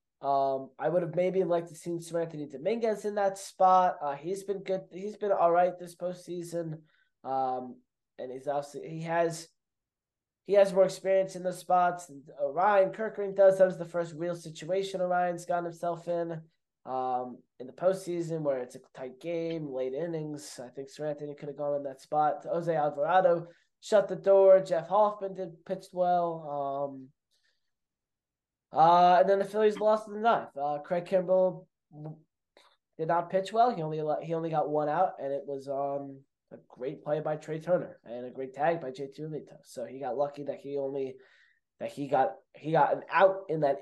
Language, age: English, 20-39